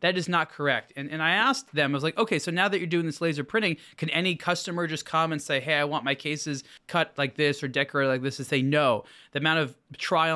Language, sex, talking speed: English, male, 270 wpm